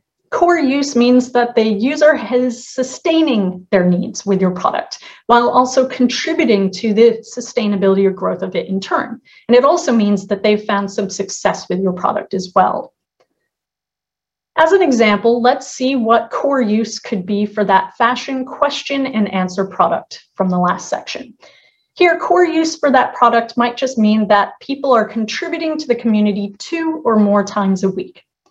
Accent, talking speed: American, 175 wpm